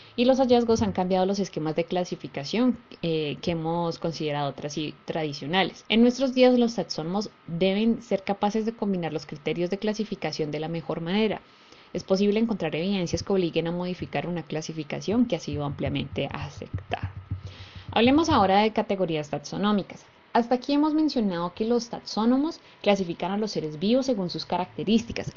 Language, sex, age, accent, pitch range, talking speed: Spanish, female, 20-39, Colombian, 165-230 Hz, 160 wpm